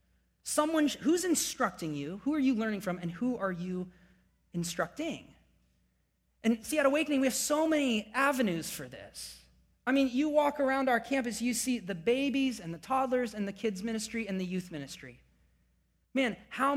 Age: 30-49